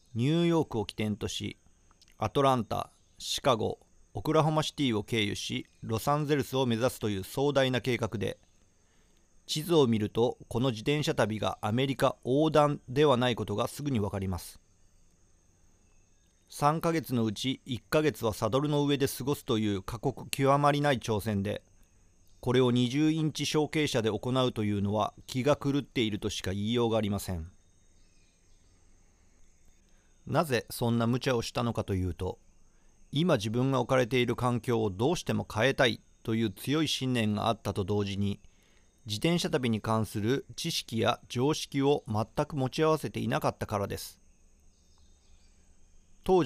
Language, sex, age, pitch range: Japanese, male, 40-59, 95-135 Hz